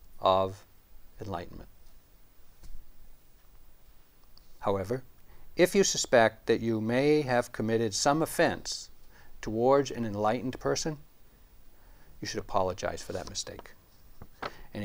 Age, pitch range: 60-79, 100-130 Hz